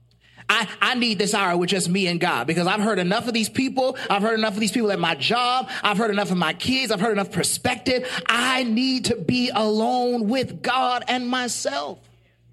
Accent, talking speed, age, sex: American, 215 wpm, 30-49, male